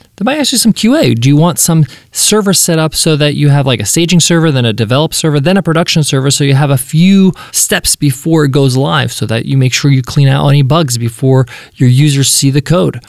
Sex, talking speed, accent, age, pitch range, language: male, 250 wpm, American, 20-39, 130-180 Hz, English